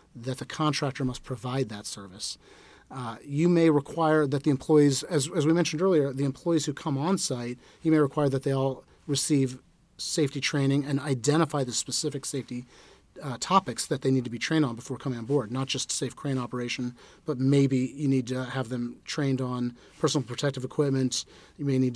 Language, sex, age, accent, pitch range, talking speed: English, male, 40-59, American, 125-150 Hz, 195 wpm